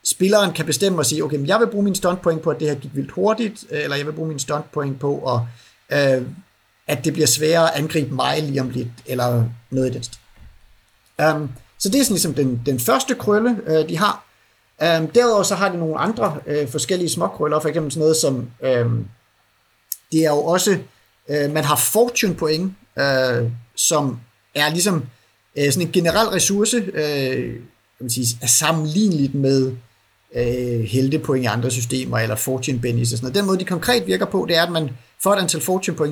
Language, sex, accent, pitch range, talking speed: Danish, male, native, 125-180 Hz, 200 wpm